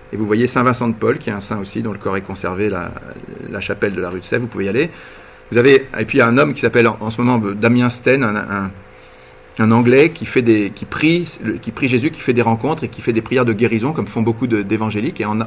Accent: French